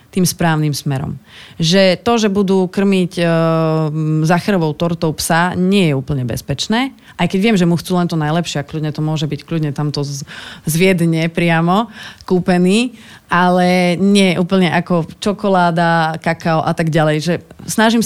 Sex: female